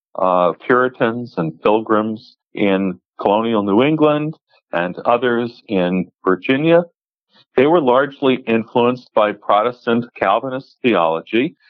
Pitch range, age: 105-150 Hz, 50-69